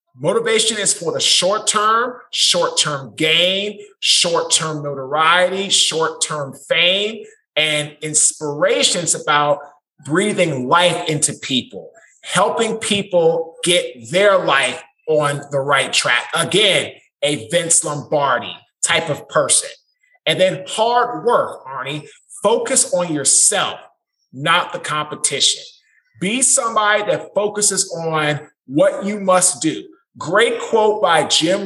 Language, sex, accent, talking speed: English, male, American, 120 wpm